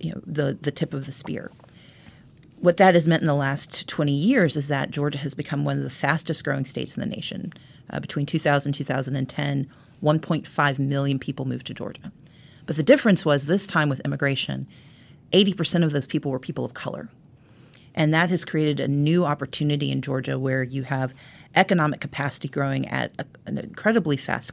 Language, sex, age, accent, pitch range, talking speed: English, female, 40-59, American, 140-165 Hz, 190 wpm